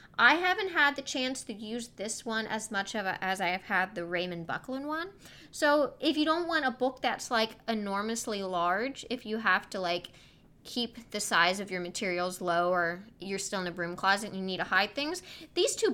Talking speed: 215 wpm